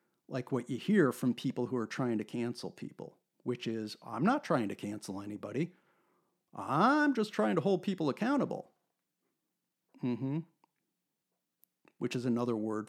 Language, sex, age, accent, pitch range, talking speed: English, male, 50-69, American, 125-180 Hz, 150 wpm